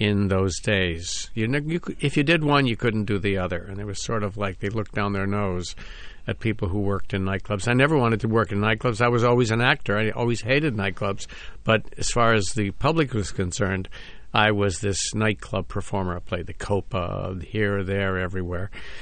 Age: 50-69